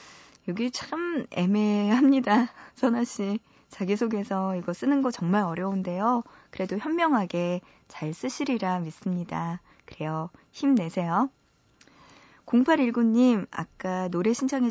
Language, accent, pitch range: Korean, native, 180-240 Hz